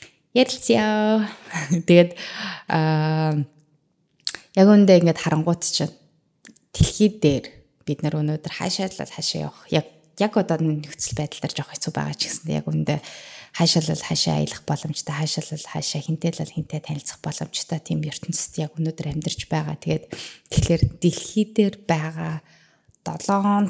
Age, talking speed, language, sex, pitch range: 20-39, 100 wpm, English, female, 155-180 Hz